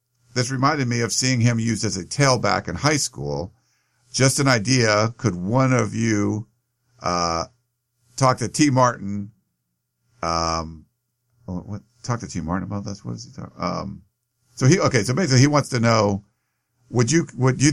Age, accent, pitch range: 50-69, American, 105-125 Hz